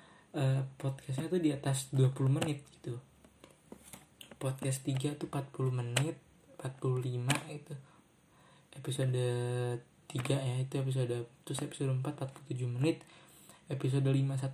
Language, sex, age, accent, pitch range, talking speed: Indonesian, male, 20-39, native, 130-150 Hz, 105 wpm